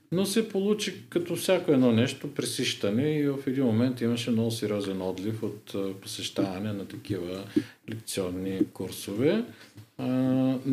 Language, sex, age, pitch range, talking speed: Bulgarian, male, 50-69, 105-125 Hz, 130 wpm